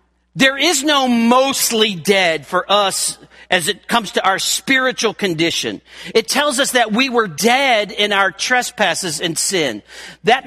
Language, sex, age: English, male, 50-69